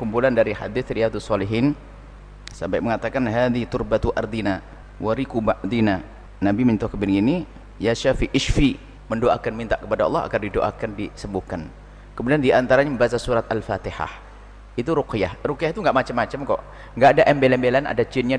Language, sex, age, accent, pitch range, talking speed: Indonesian, male, 30-49, native, 110-140 Hz, 135 wpm